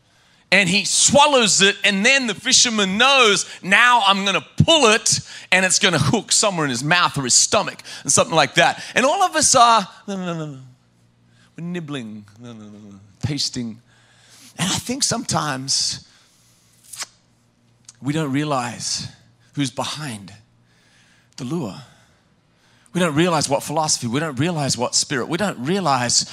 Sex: male